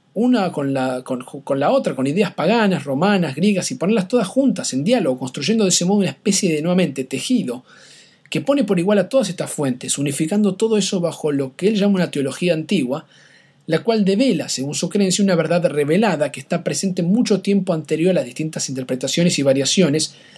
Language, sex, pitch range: Spanish, male, 145-195 Hz